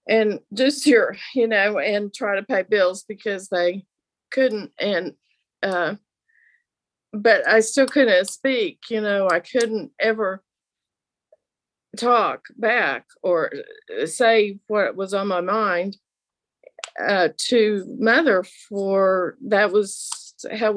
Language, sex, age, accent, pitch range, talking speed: English, female, 50-69, American, 190-225 Hz, 120 wpm